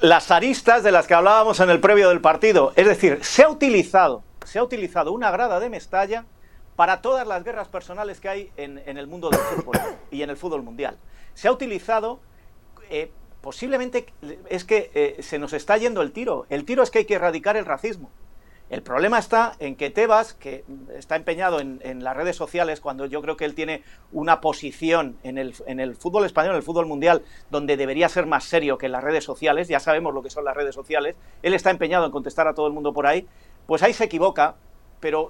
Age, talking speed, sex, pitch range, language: 40-59, 220 wpm, male, 150-205 Hz, Spanish